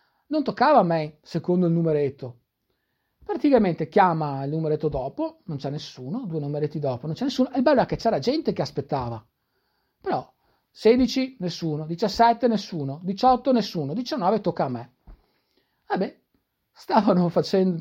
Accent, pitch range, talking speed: native, 145-240 Hz, 150 wpm